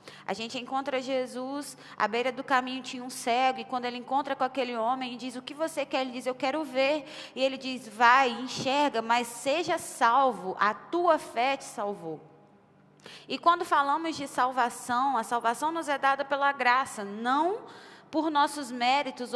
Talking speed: 180 wpm